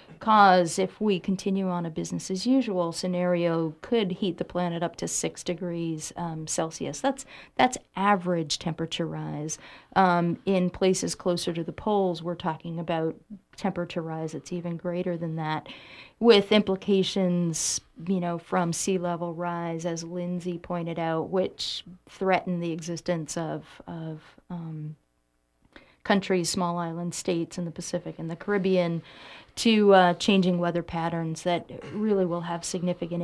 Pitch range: 165-190 Hz